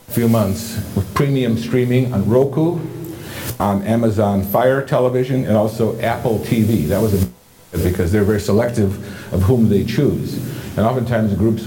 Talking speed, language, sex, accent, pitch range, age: 145 wpm, English, male, American, 100-125 Hz, 60-79